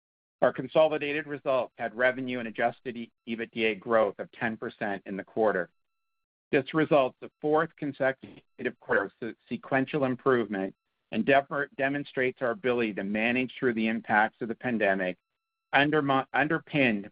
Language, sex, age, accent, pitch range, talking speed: English, male, 50-69, American, 110-140 Hz, 125 wpm